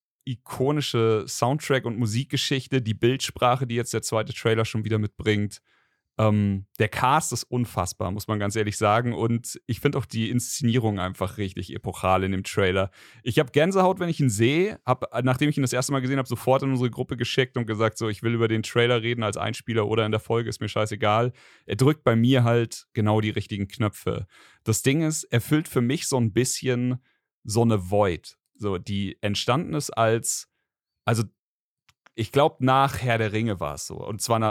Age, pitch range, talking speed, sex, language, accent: 40-59, 105-130 Hz, 200 wpm, male, German, German